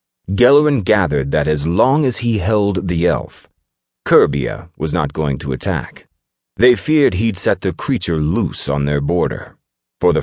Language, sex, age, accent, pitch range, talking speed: English, male, 30-49, American, 70-95 Hz, 165 wpm